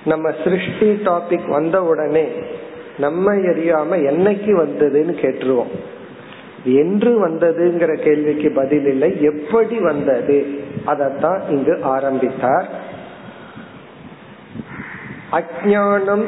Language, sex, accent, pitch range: Tamil, male, native, 150-195 Hz